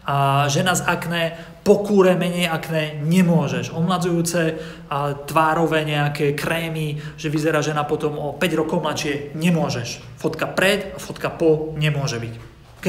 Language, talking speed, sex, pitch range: Slovak, 135 wpm, male, 140-180 Hz